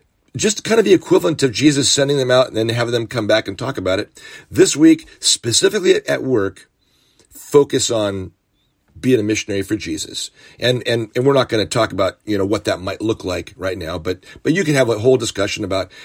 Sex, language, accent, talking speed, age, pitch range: male, English, American, 220 wpm, 40-59, 105-145 Hz